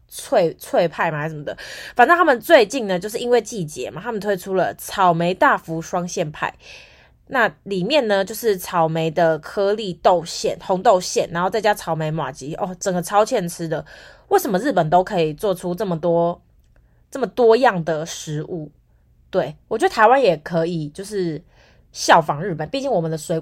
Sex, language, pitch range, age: female, Chinese, 165-215 Hz, 20-39